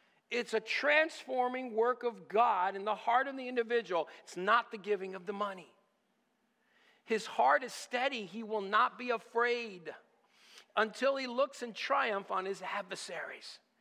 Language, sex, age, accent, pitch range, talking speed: English, male, 50-69, American, 155-230 Hz, 155 wpm